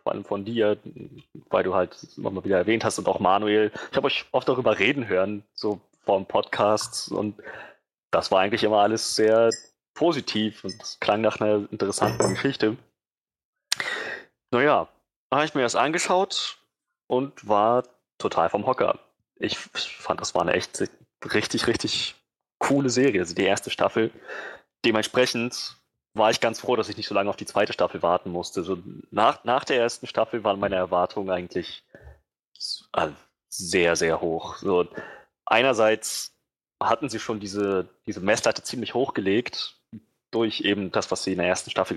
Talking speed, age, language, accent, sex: 160 wpm, 20-39, German, German, male